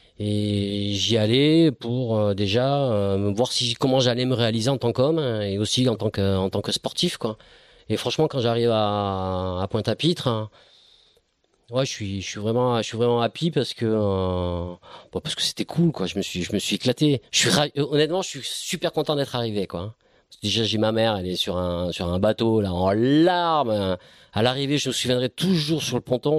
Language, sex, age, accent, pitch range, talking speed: French, male, 40-59, French, 100-130 Hz, 220 wpm